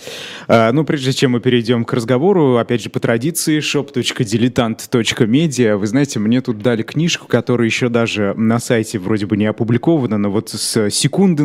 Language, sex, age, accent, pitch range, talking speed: Russian, male, 20-39, native, 115-140 Hz, 160 wpm